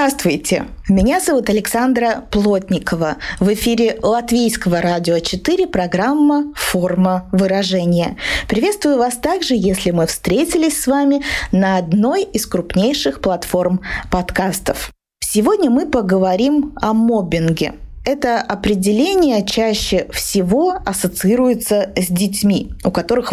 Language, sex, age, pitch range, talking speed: Russian, female, 20-39, 185-250 Hz, 105 wpm